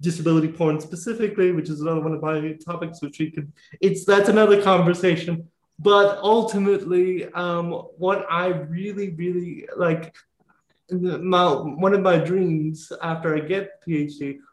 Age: 30-49